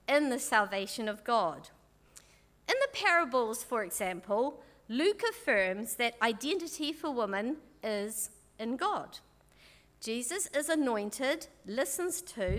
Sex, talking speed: female, 115 wpm